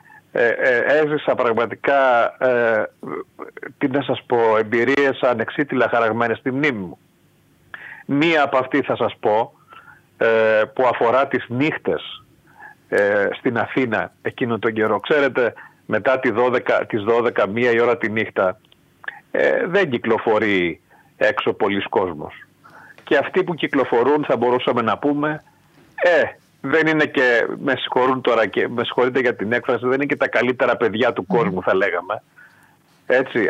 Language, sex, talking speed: Greek, male, 140 wpm